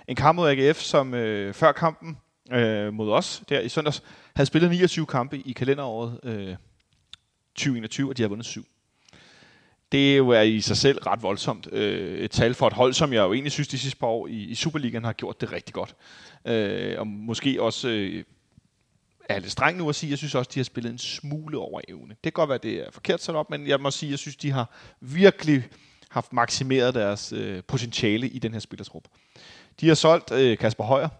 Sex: male